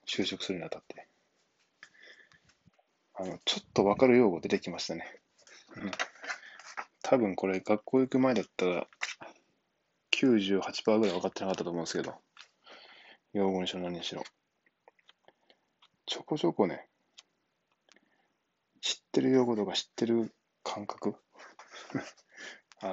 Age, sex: 20-39, male